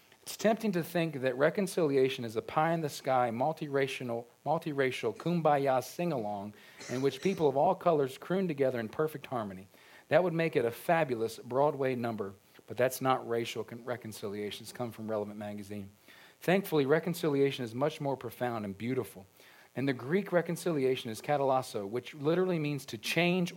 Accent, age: American, 40-59